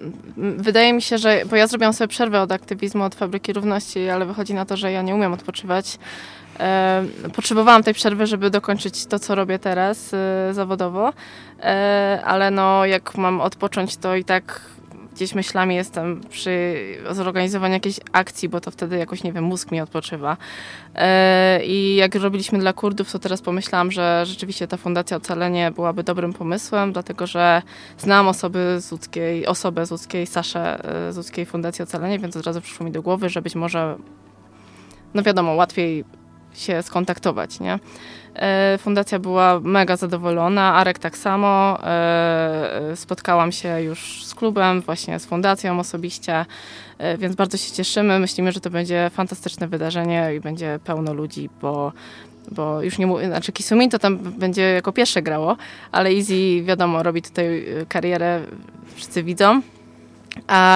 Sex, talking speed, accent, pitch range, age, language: female, 150 wpm, native, 170-195 Hz, 20-39, Polish